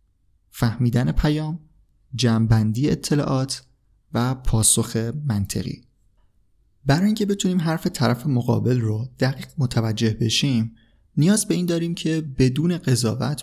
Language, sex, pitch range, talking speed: Persian, male, 110-140 Hz, 105 wpm